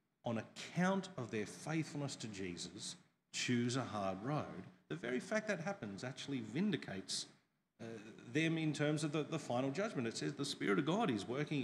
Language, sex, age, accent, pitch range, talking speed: English, male, 40-59, Australian, 125-180 Hz, 180 wpm